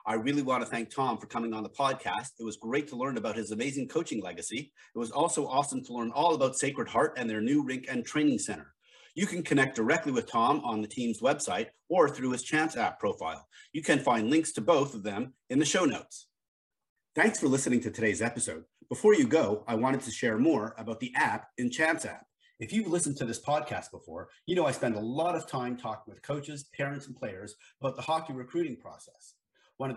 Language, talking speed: English, 230 wpm